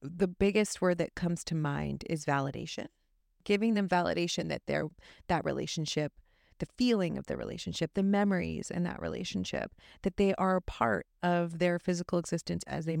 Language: English